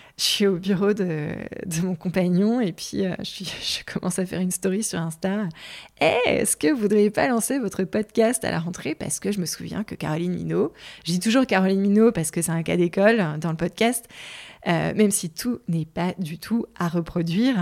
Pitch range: 170-215 Hz